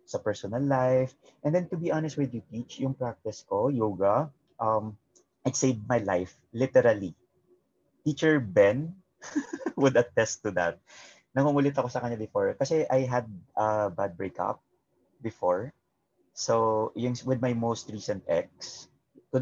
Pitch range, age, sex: 105-135 Hz, 30-49, male